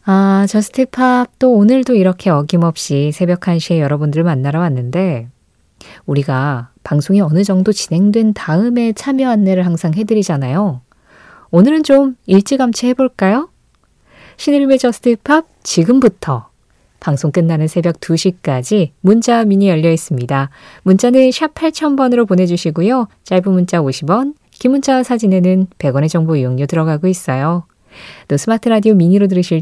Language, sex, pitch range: Korean, female, 155-225 Hz